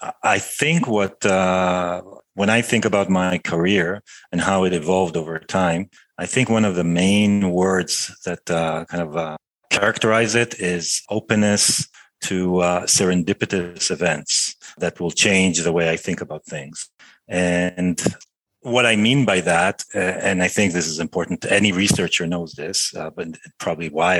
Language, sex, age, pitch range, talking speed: English, male, 40-59, 90-105 Hz, 165 wpm